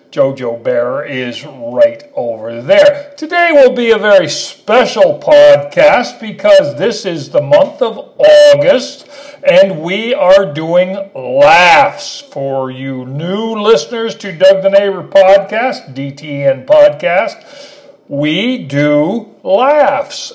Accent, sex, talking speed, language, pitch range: American, male, 115 wpm, English, 175-290 Hz